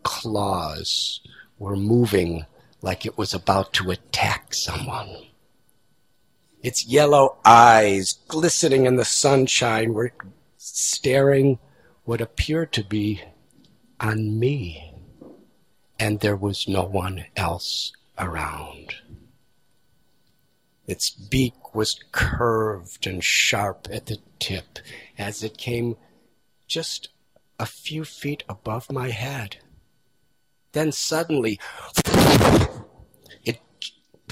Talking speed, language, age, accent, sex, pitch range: 95 wpm, English, 50-69, American, male, 100-145 Hz